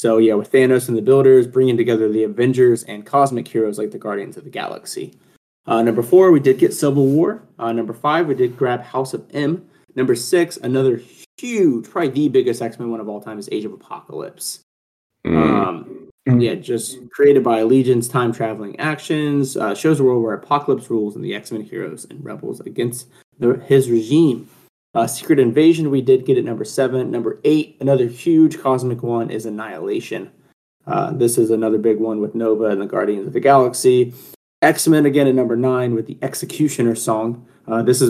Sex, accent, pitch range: male, American, 115-145 Hz